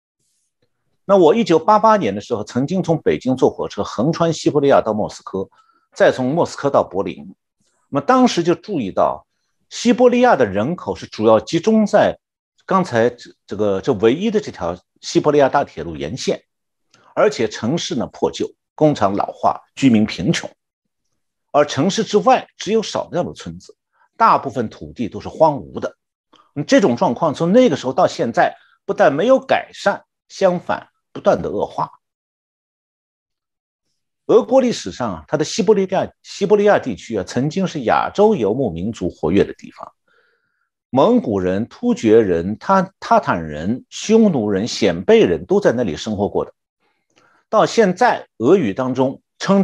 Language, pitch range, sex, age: Chinese, 150-230 Hz, male, 50-69